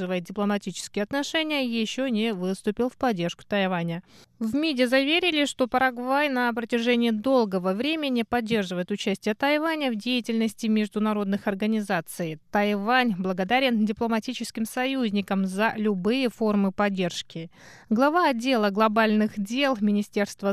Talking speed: 110 wpm